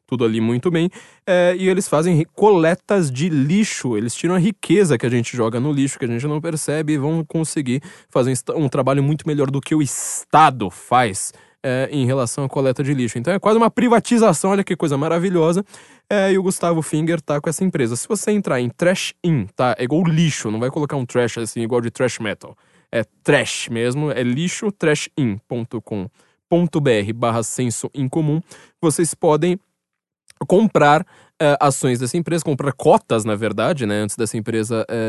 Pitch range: 130-175 Hz